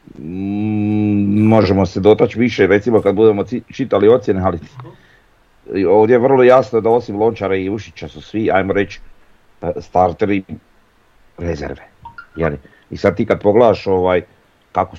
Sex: male